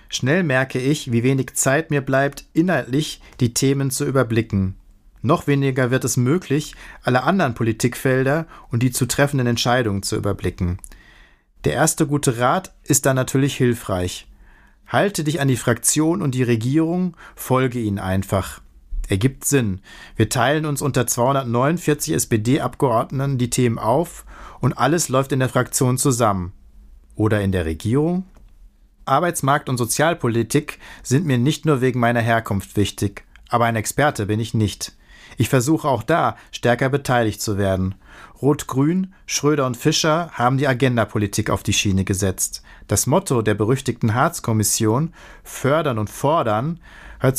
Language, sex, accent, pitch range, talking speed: German, male, German, 110-145 Hz, 145 wpm